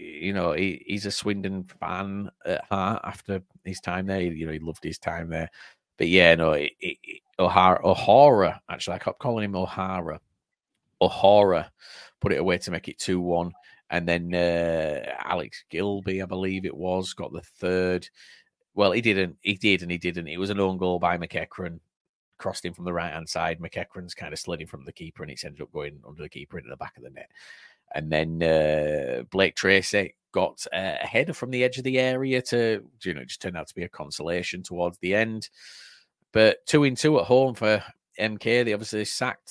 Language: English